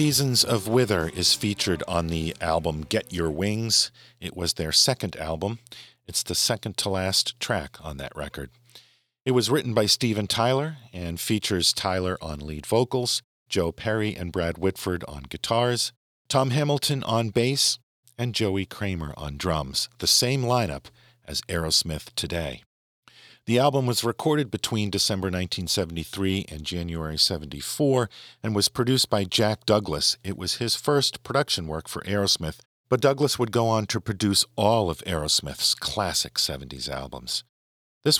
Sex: male